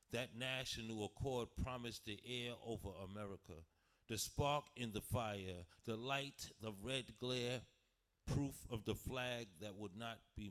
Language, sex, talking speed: English, male, 150 wpm